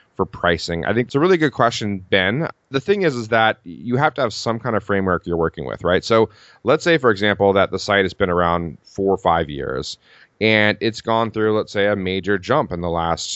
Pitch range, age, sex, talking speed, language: 90-125 Hz, 30-49, male, 245 wpm, English